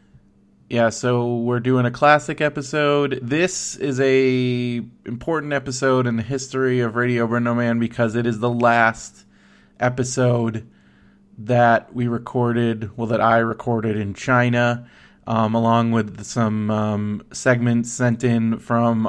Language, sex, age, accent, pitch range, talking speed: English, male, 20-39, American, 110-125 Hz, 135 wpm